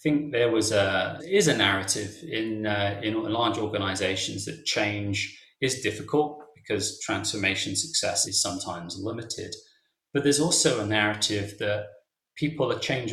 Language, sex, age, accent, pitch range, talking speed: English, male, 30-49, British, 100-145 Hz, 145 wpm